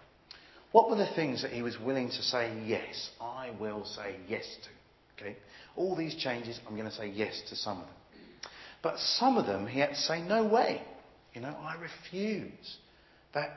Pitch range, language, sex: 105-145 Hz, English, male